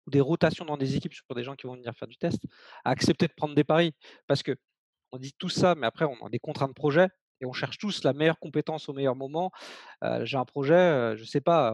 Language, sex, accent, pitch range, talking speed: French, male, French, 135-170 Hz, 270 wpm